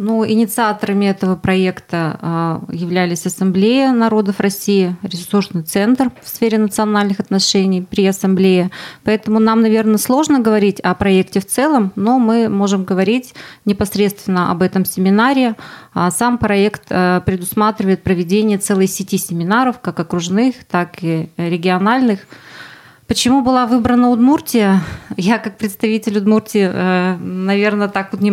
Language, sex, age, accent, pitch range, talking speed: Russian, female, 20-39, native, 185-220 Hz, 120 wpm